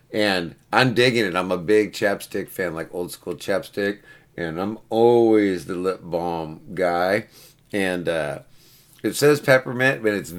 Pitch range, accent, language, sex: 90-115 Hz, American, English, male